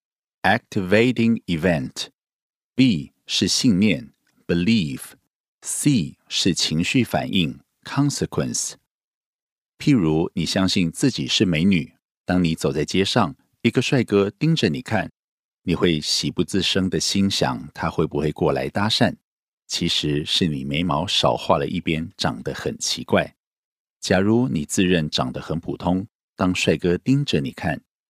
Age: 50-69